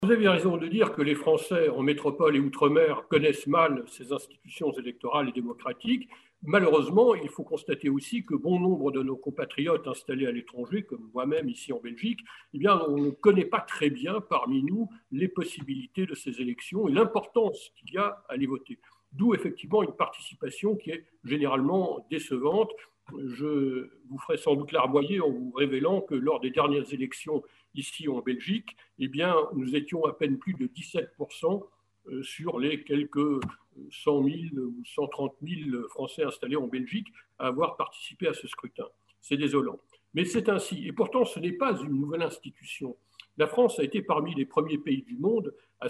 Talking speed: 180 wpm